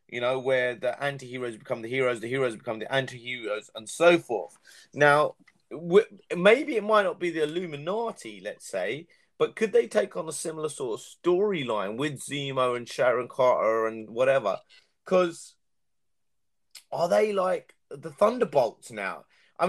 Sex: male